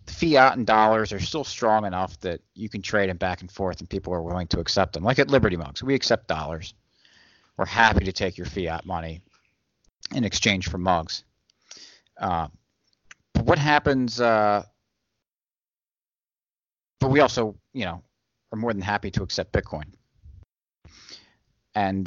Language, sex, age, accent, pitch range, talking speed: English, male, 40-59, American, 90-110 Hz, 160 wpm